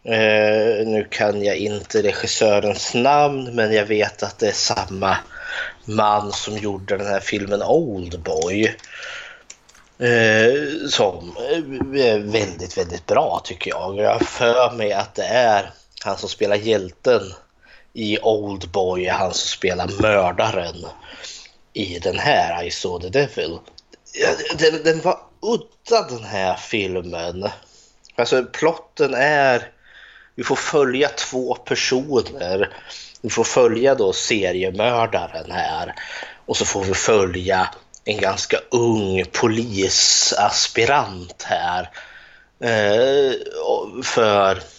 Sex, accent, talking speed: male, native, 115 wpm